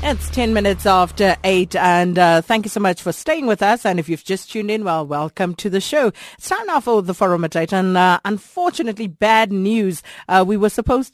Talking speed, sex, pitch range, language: 225 wpm, female, 165-210 Hz, English